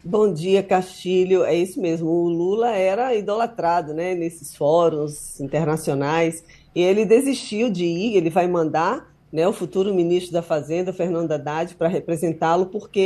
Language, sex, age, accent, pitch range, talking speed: Portuguese, female, 20-39, Brazilian, 175-215 Hz, 150 wpm